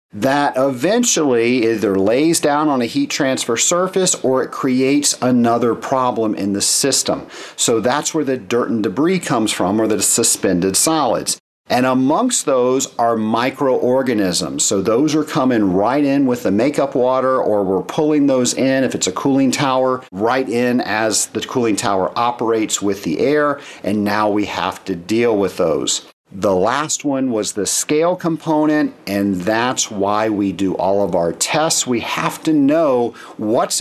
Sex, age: male, 50-69